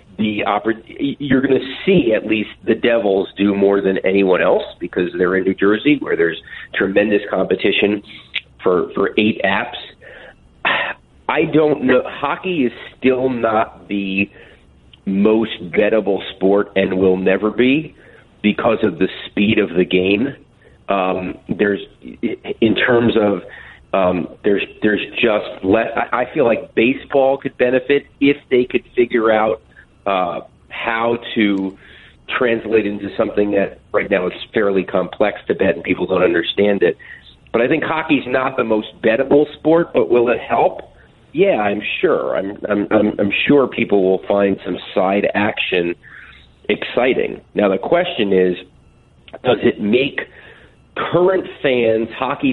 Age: 40-59